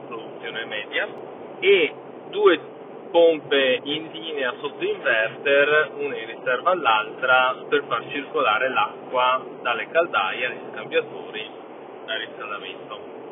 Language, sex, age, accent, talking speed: Italian, male, 30-49, native, 105 wpm